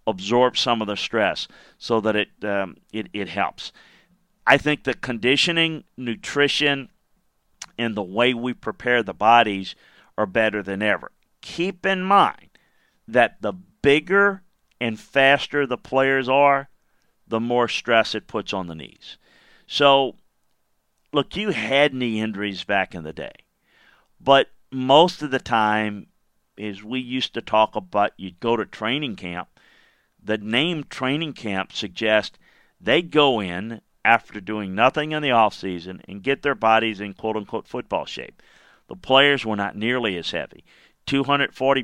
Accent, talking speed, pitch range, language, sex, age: American, 150 wpm, 105-140 Hz, English, male, 50-69